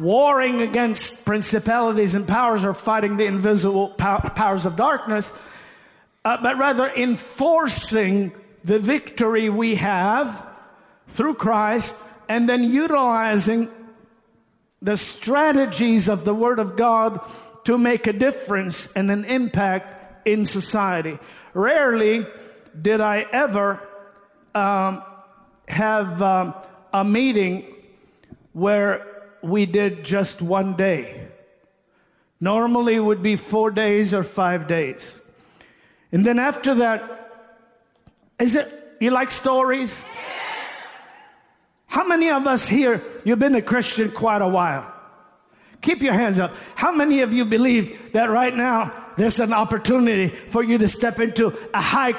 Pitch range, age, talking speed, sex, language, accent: 200-245 Hz, 50-69, 125 wpm, male, English, American